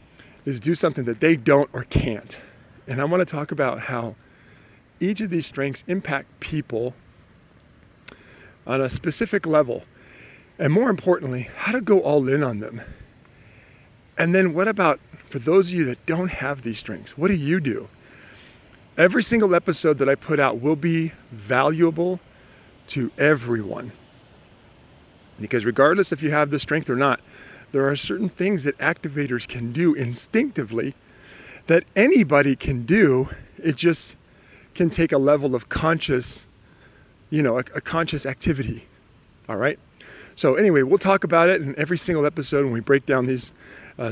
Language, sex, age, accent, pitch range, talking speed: English, male, 40-59, American, 125-165 Hz, 160 wpm